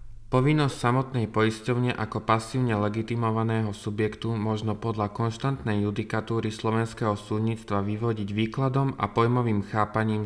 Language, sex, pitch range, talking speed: Slovak, male, 105-125 Hz, 105 wpm